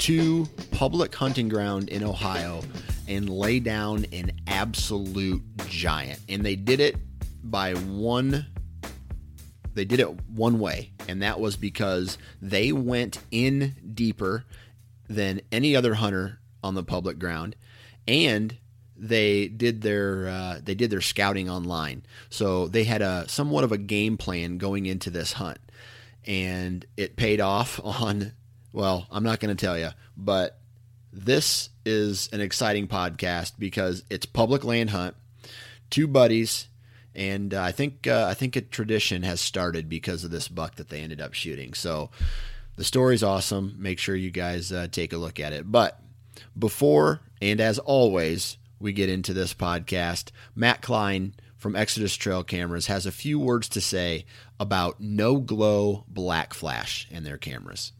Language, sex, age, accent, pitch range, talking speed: English, male, 30-49, American, 90-115 Hz, 155 wpm